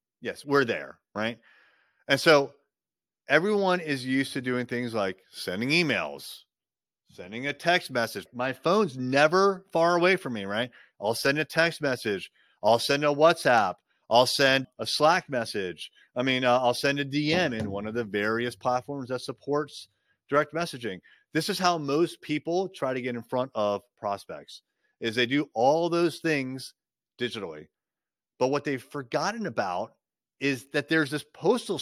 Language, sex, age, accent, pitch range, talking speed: English, male, 30-49, American, 120-155 Hz, 165 wpm